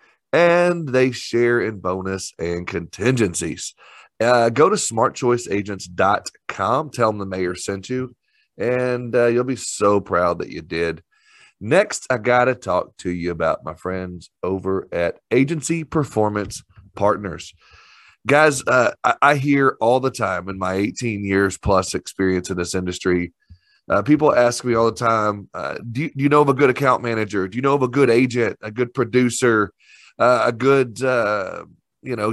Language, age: English, 30-49